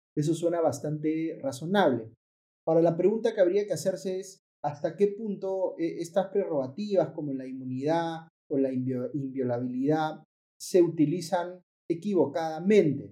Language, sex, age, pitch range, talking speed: Spanish, male, 30-49, 145-180 Hz, 120 wpm